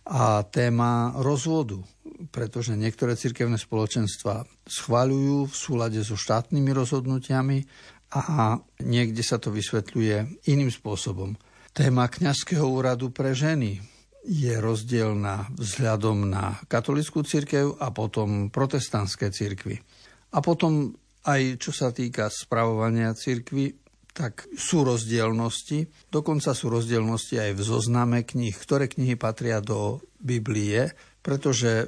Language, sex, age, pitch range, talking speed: Slovak, male, 60-79, 110-135 Hz, 110 wpm